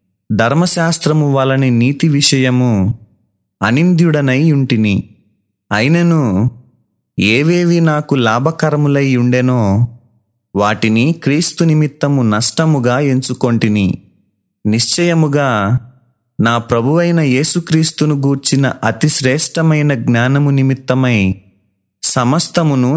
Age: 30-49